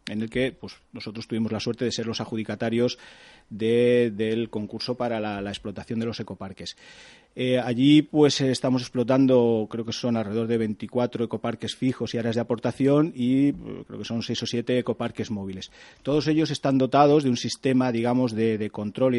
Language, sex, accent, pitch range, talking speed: Spanish, male, Spanish, 110-130 Hz, 190 wpm